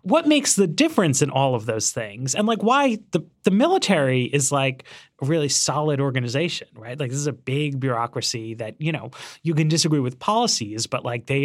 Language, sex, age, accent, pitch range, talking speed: English, male, 30-49, American, 125-180 Hz, 205 wpm